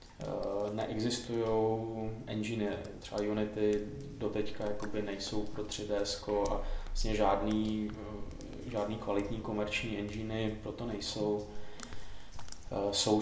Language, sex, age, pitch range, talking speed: Czech, male, 20-39, 105-110 Hz, 90 wpm